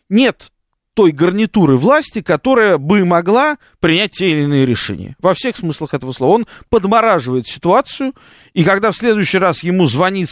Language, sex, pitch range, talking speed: Russian, male, 140-200 Hz, 155 wpm